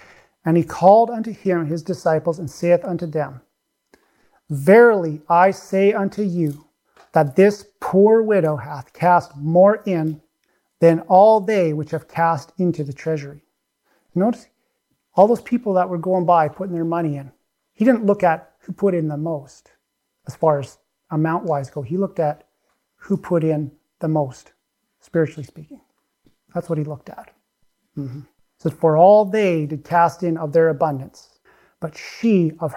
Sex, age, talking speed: male, 40-59, 165 wpm